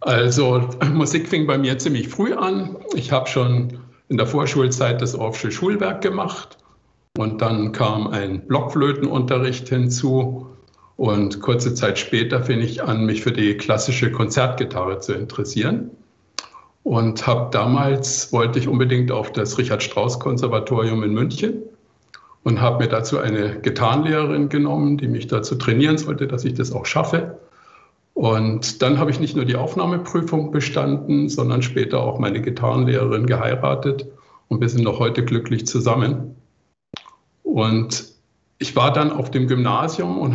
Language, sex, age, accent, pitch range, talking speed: German, male, 60-79, German, 115-140 Hz, 145 wpm